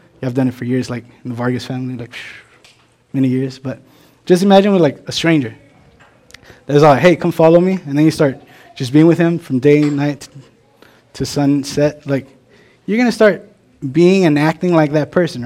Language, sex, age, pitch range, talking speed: English, male, 20-39, 135-175 Hz, 195 wpm